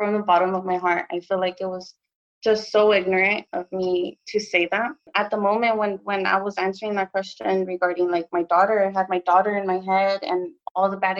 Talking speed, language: 235 wpm, English